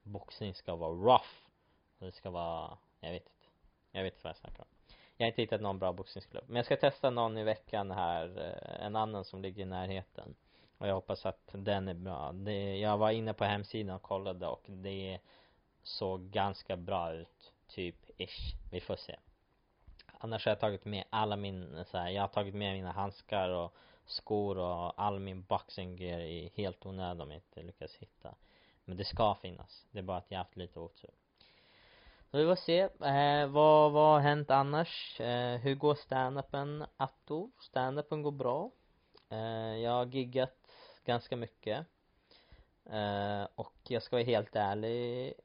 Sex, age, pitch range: male, 20-39, 95-120 Hz